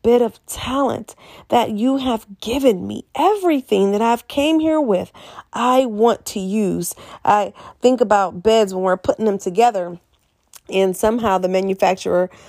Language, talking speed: English, 150 wpm